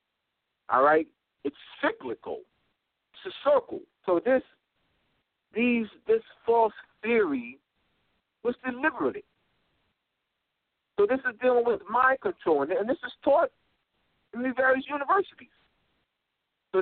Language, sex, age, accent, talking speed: English, male, 60-79, American, 110 wpm